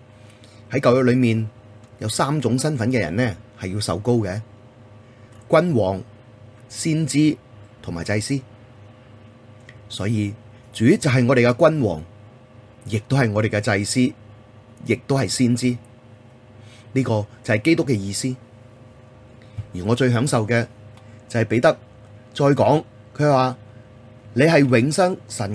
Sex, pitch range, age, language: male, 105-125 Hz, 30-49, Chinese